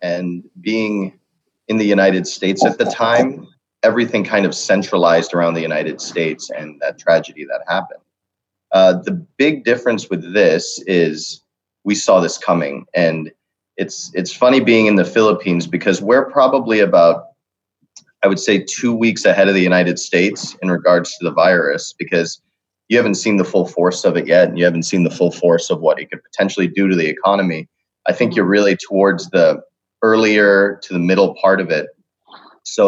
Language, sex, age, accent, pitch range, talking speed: English, male, 30-49, American, 90-105 Hz, 185 wpm